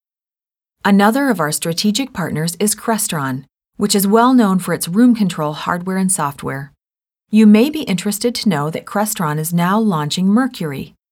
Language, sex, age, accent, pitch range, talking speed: English, female, 40-59, American, 160-220 Hz, 160 wpm